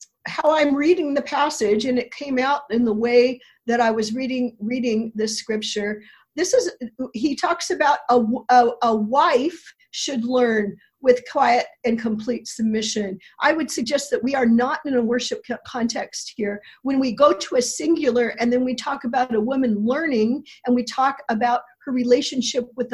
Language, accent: English, American